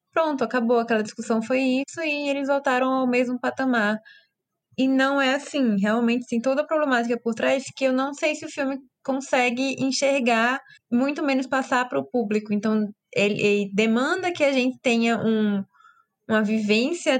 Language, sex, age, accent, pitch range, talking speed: Portuguese, female, 20-39, Brazilian, 215-260 Hz, 170 wpm